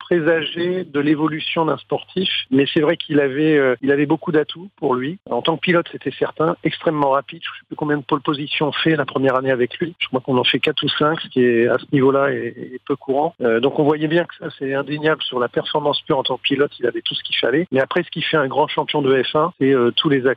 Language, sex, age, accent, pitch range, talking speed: French, male, 50-69, French, 125-155 Hz, 285 wpm